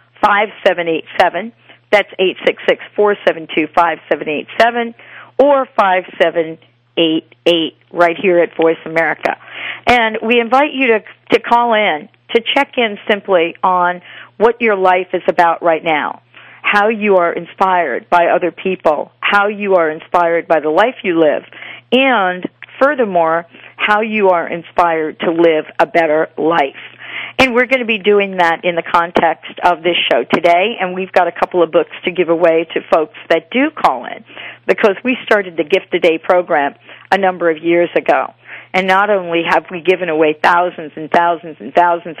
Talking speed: 180 wpm